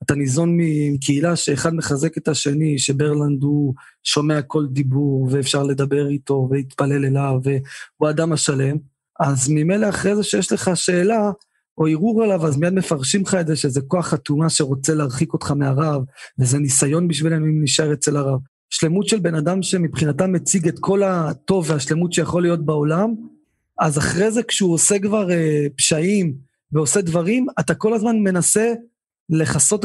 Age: 20-39